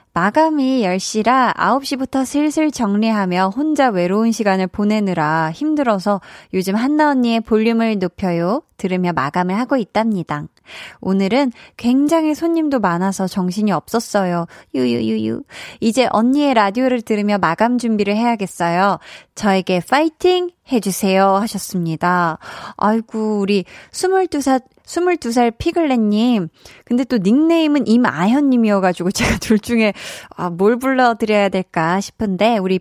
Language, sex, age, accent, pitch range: Korean, female, 20-39, native, 190-250 Hz